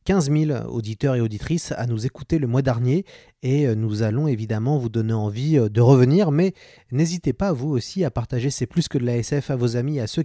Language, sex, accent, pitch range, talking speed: French, male, French, 120-160 Hz, 235 wpm